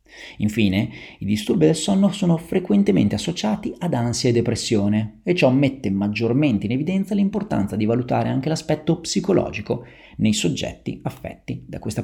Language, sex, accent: Italian, male, native